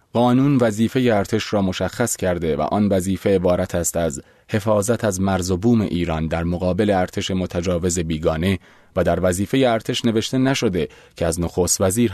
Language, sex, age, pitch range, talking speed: Persian, male, 30-49, 90-120 Hz, 165 wpm